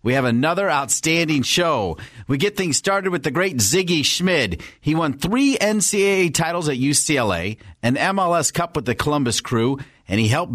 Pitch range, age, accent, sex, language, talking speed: 125-170 Hz, 40-59, American, male, English, 175 wpm